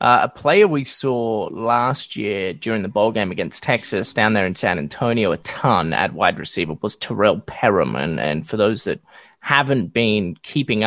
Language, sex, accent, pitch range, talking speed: English, male, Australian, 120-160 Hz, 190 wpm